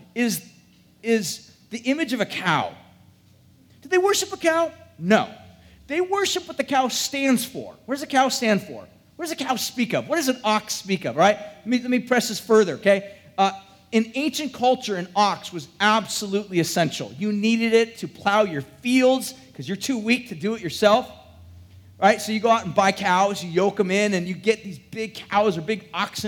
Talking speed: 210 wpm